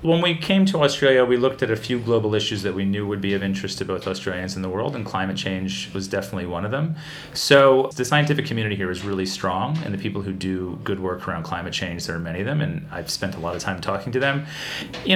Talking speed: 265 wpm